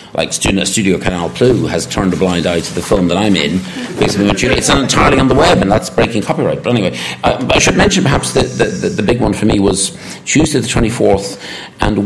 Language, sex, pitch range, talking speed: Swedish, male, 75-95 Hz, 220 wpm